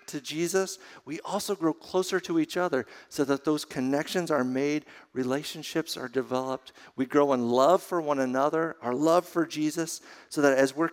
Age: 50-69